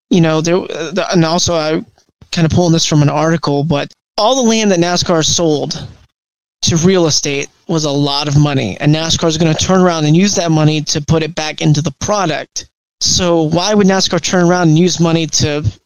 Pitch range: 155-185 Hz